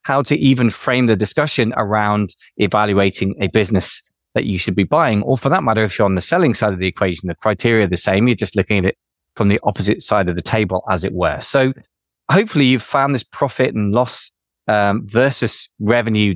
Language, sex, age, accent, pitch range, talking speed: English, male, 20-39, British, 95-120 Hz, 215 wpm